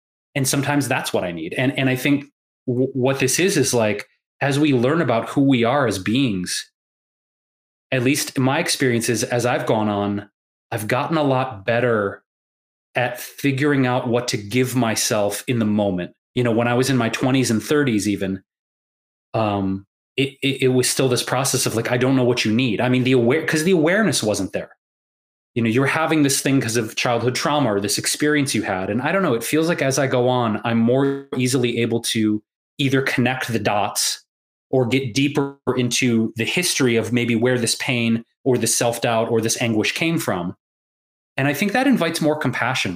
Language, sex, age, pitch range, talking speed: English, male, 30-49, 115-140 Hz, 205 wpm